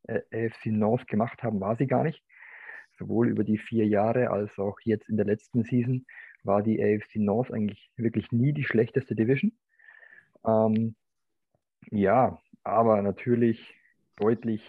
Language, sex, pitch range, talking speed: German, male, 100-115 Hz, 145 wpm